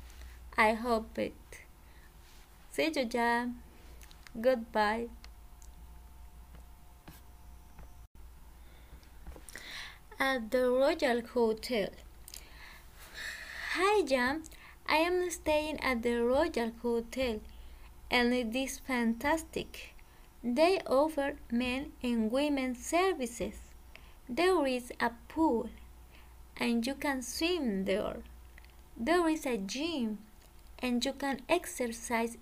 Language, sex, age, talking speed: English, female, 20-39, 85 wpm